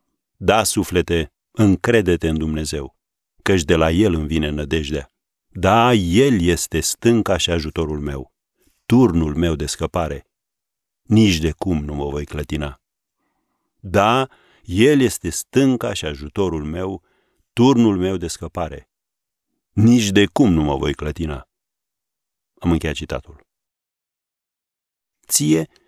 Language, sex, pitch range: Romanian, male, 80-105 Hz